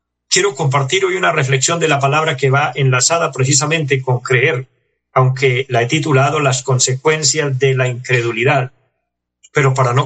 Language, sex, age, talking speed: Spanish, male, 50-69, 155 wpm